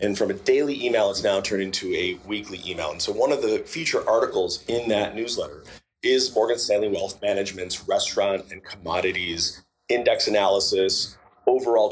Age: 30-49